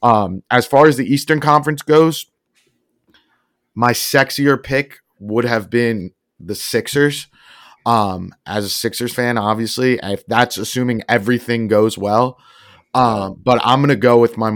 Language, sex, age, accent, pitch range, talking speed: English, male, 30-49, American, 100-120 Hz, 150 wpm